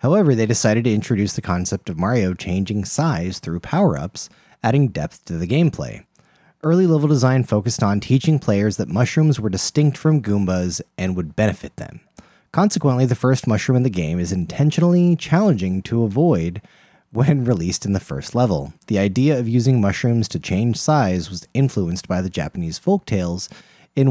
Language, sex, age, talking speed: English, male, 30-49, 170 wpm